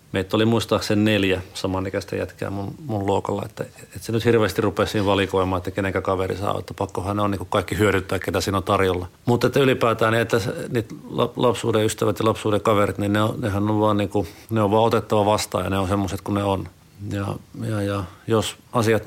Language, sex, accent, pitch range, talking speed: Finnish, male, native, 95-110 Hz, 205 wpm